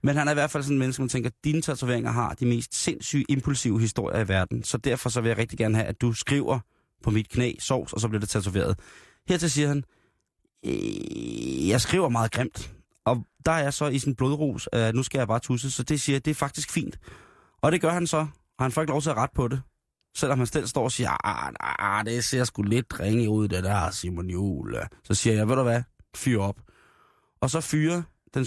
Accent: native